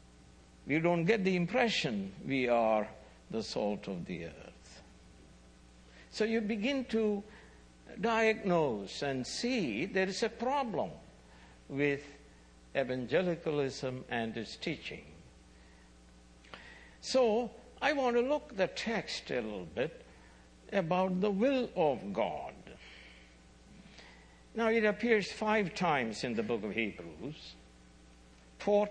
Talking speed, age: 115 wpm, 60-79